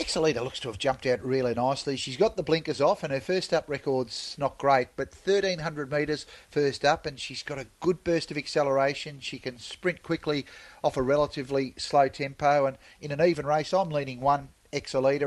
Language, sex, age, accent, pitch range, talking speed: English, male, 40-59, Australian, 125-150 Hz, 195 wpm